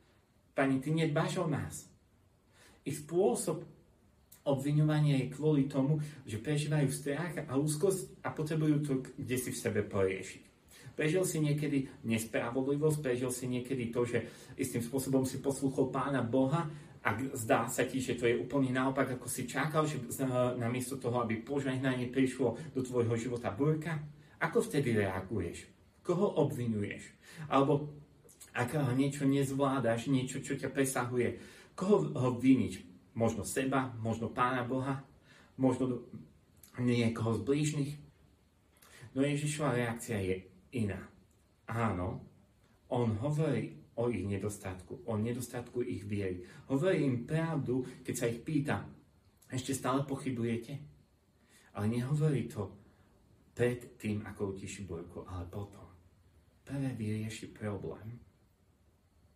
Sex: male